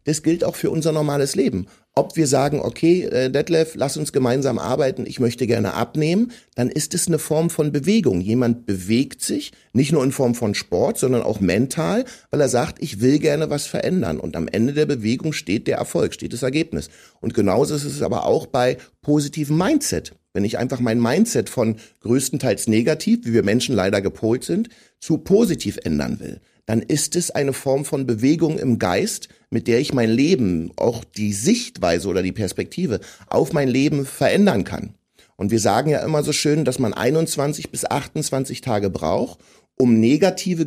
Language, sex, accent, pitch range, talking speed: German, male, German, 120-160 Hz, 185 wpm